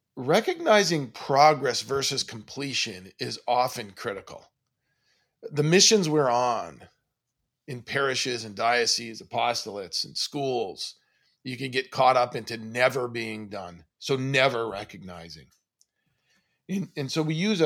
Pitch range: 120-155 Hz